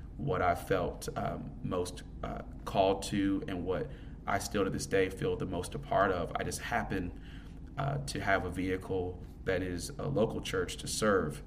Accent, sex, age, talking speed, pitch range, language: American, male, 30-49, 190 wpm, 90-105 Hz, English